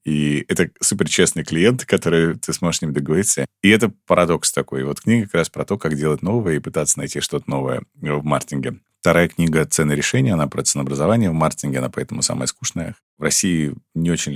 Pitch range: 70-85 Hz